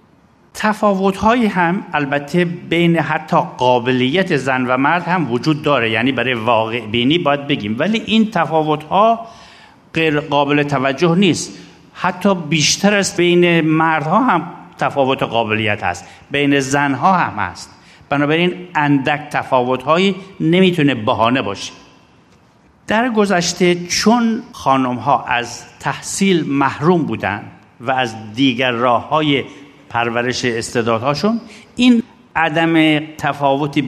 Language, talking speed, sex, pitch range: Persian, 120 wpm, male, 130-175 Hz